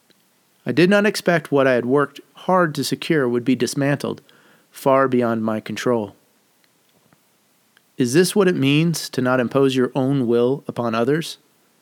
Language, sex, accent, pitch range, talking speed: English, male, American, 120-150 Hz, 155 wpm